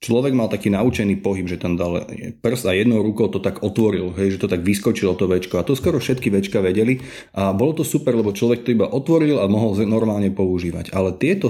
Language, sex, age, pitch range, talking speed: Slovak, male, 30-49, 100-120 Hz, 225 wpm